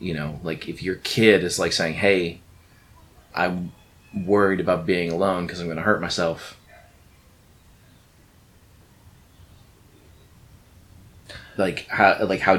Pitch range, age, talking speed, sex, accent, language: 85-100 Hz, 30-49, 115 wpm, male, American, English